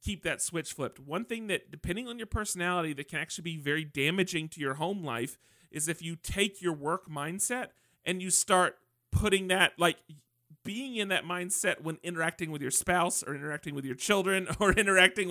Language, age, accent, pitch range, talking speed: English, 40-59, American, 145-190 Hz, 195 wpm